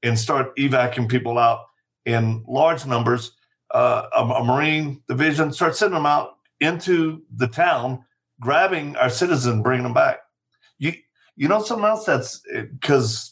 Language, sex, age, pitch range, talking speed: English, male, 50-69, 115-150 Hz, 155 wpm